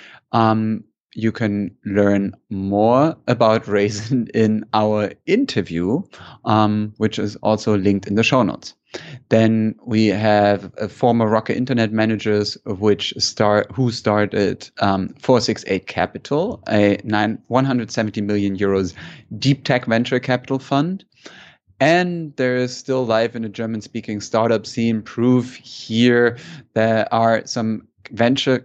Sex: male